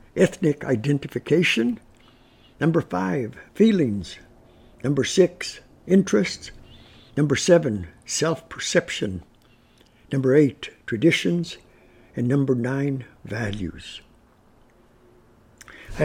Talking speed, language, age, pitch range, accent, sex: 70 wpm, English, 60-79, 115-165 Hz, American, male